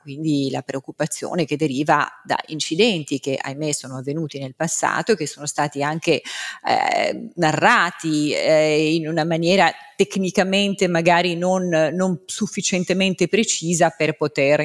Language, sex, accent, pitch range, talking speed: Italian, female, native, 145-185 Hz, 130 wpm